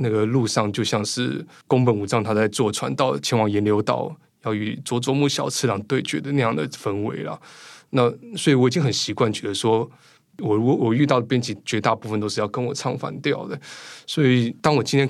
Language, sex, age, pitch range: Chinese, male, 20-39, 105-135 Hz